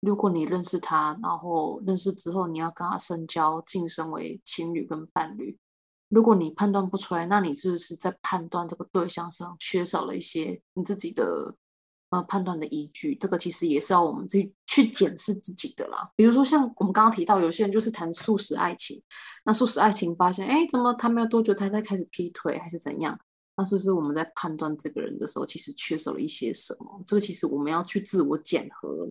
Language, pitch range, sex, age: Chinese, 170-205 Hz, female, 20-39